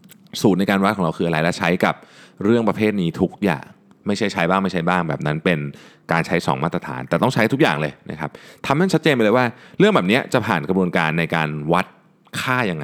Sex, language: male, Thai